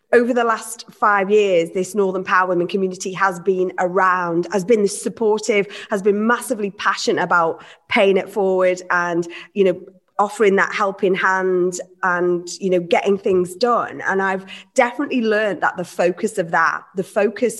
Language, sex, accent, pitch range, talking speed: English, female, British, 180-215 Hz, 165 wpm